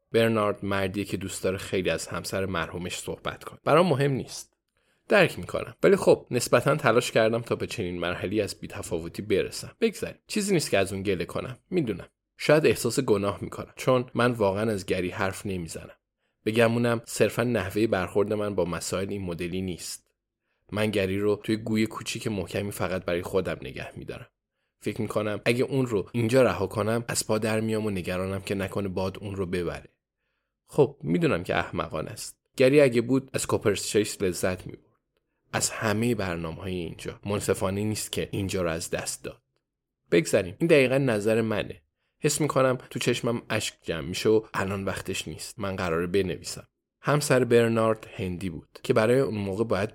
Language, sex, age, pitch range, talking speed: Persian, male, 20-39, 95-115 Hz, 170 wpm